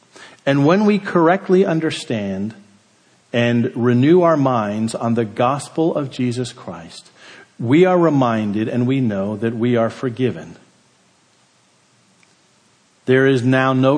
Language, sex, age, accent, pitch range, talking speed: English, male, 50-69, American, 115-165 Hz, 125 wpm